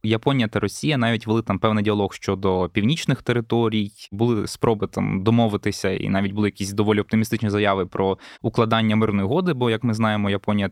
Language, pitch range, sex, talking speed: Ukrainian, 100-115 Hz, male, 175 wpm